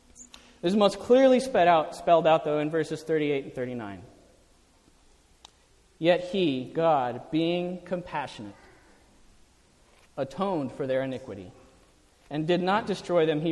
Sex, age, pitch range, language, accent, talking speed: male, 40-59, 155-230 Hz, English, American, 120 wpm